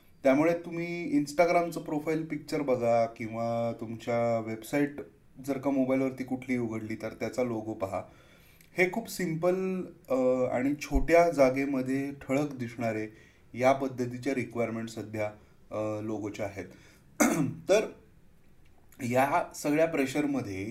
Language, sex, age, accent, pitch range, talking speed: Marathi, male, 20-39, native, 110-140 Hz, 105 wpm